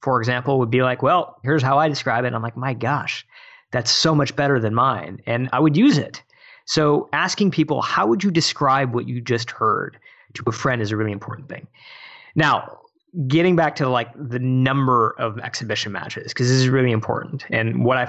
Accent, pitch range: American, 120-165 Hz